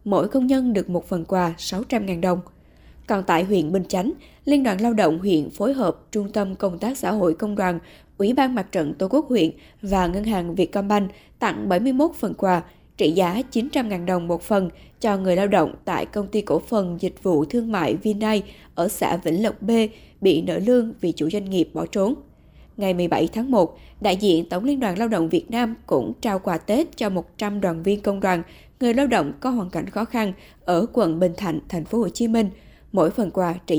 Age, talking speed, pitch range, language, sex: 20-39, 215 wpm, 180-235 Hz, Vietnamese, female